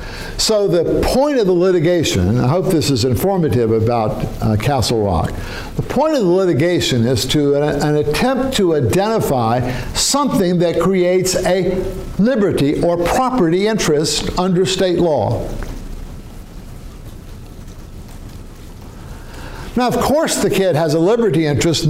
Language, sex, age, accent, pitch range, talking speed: English, male, 60-79, American, 135-185 Hz, 130 wpm